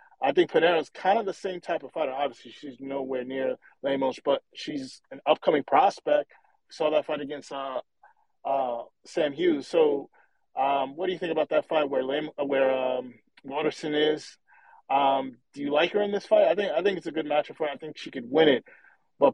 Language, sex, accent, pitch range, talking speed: English, male, American, 140-185 Hz, 215 wpm